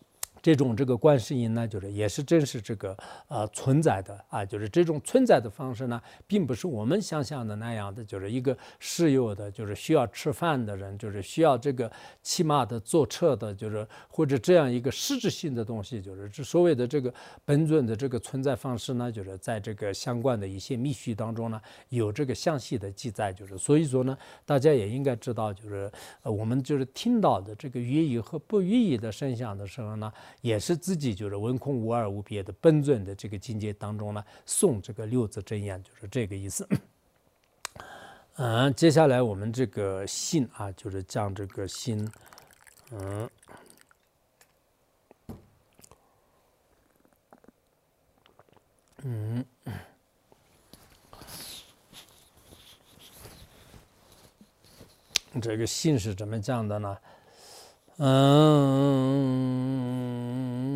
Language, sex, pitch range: English, male, 105-140 Hz